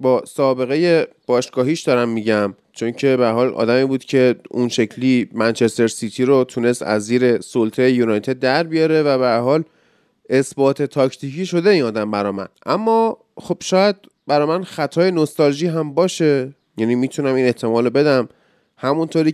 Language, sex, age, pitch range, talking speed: Persian, male, 30-49, 120-155 Hz, 150 wpm